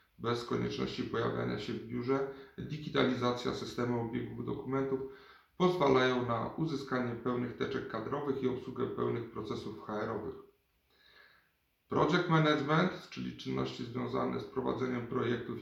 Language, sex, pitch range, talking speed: Polish, male, 115-145 Hz, 110 wpm